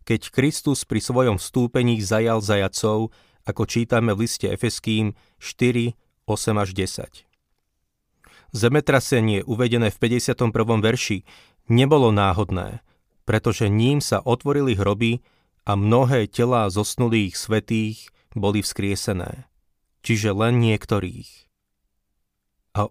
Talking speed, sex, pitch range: 100 wpm, male, 105-125 Hz